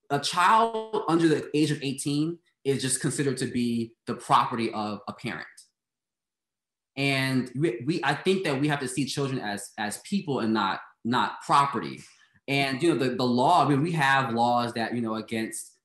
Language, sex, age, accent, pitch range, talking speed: English, male, 20-39, American, 115-145 Hz, 190 wpm